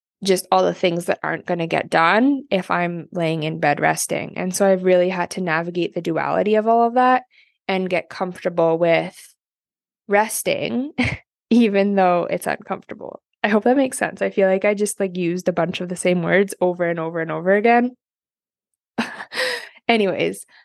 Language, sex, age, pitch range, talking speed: English, female, 20-39, 180-215 Hz, 185 wpm